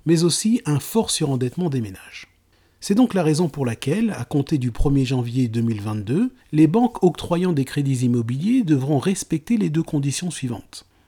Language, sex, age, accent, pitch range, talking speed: French, male, 40-59, French, 130-180 Hz, 170 wpm